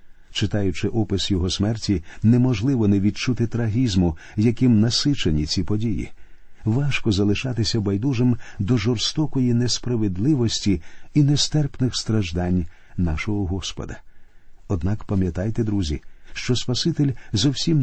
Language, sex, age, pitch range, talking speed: Ukrainian, male, 50-69, 95-125 Hz, 100 wpm